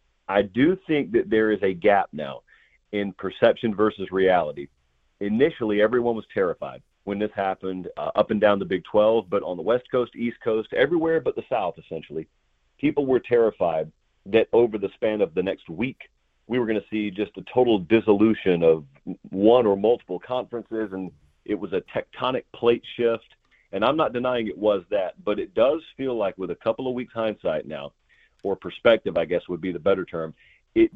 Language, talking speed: English, 195 wpm